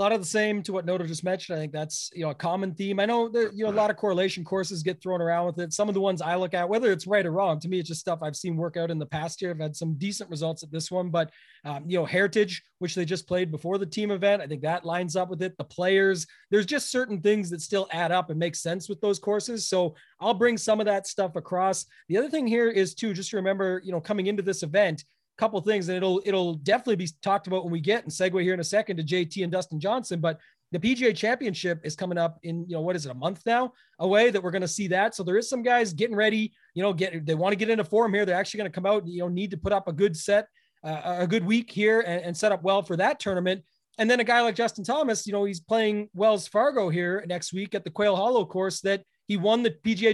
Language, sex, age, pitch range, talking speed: English, male, 30-49, 175-210 Hz, 290 wpm